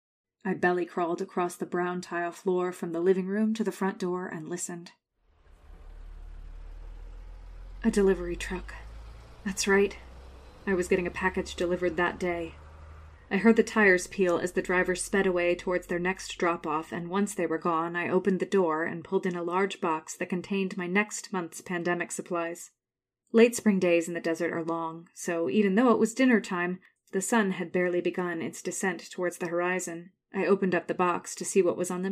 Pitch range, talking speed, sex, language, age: 170-195 Hz, 190 wpm, female, English, 30-49